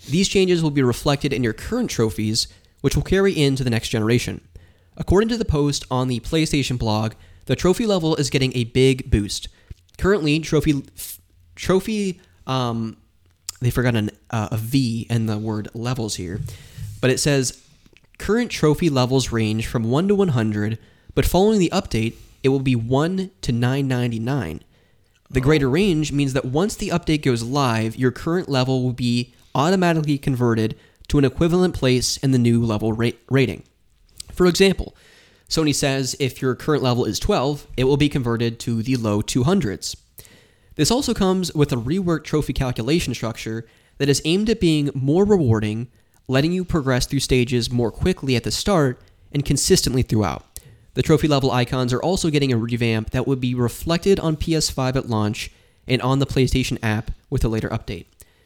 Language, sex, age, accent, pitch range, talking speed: English, male, 20-39, American, 115-150 Hz, 170 wpm